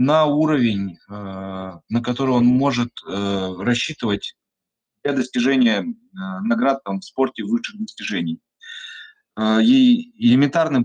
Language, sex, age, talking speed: Russian, male, 20-39, 95 wpm